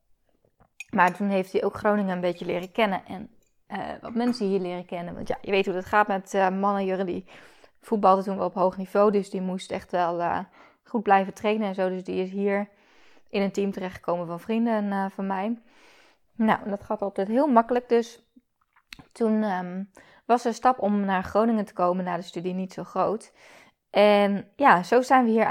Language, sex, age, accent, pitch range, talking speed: Dutch, female, 20-39, Dutch, 185-220 Hz, 205 wpm